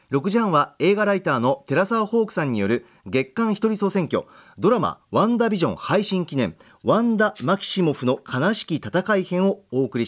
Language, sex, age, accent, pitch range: Japanese, male, 40-59, native, 145-210 Hz